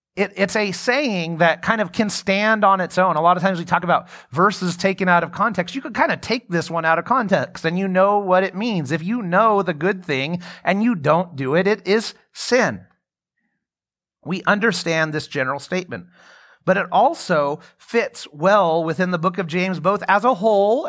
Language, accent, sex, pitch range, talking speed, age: English, American, male, 165-205 Hz, 205 wpm, 30-49